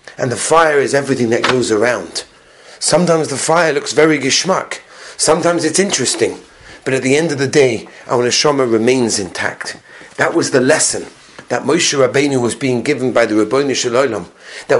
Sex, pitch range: male, 135-215 Hz